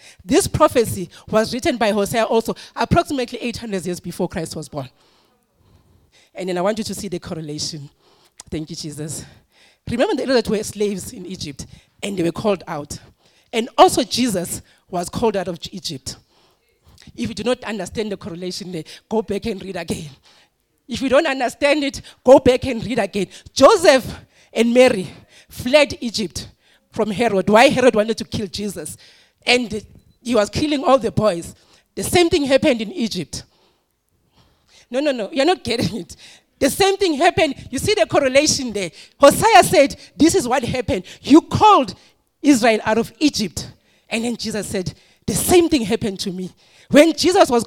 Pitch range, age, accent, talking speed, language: 195-285 Hz, 30-49, South African, 170 wpm, English